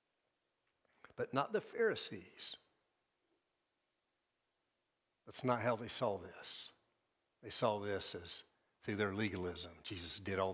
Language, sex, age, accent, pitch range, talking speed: English, male, 60-79, American, 100-140 Hz, 115 wpm